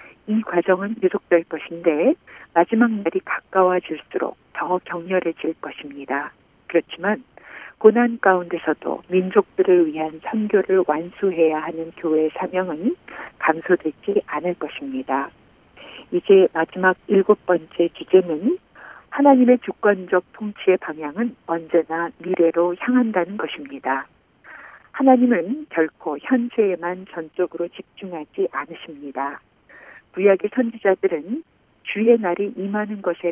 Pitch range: 165-215 Hz